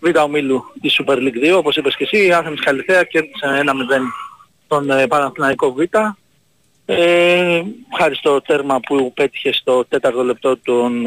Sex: male